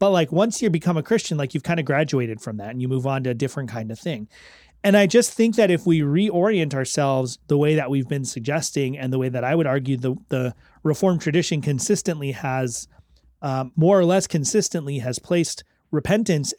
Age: 30-49